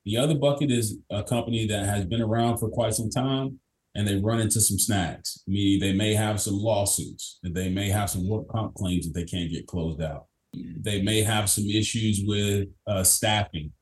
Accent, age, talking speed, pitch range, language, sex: American, 30-49, 210 wpm, 90-110 Hz, English, male